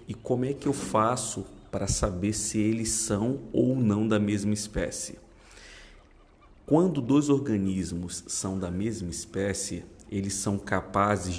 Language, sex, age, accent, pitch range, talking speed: Portuguese, male, 50-69, Brazilian, 95-115 Hz, 135 wpm